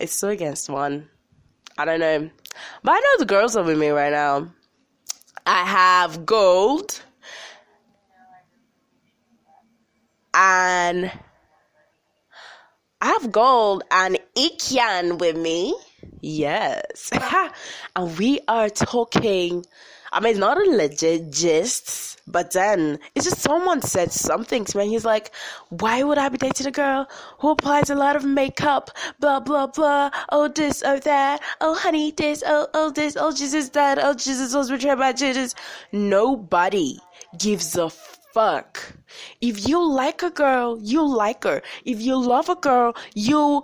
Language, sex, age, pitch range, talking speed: English, female, 10-29, 195-295 Hz, 140 wpm